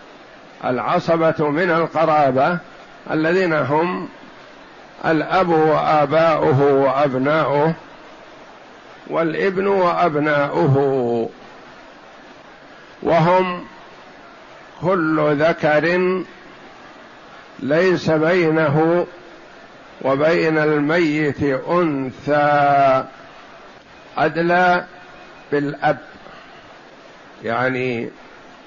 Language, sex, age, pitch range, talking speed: Arabic, male, 60-79, 145-170 Hz, 45 wpm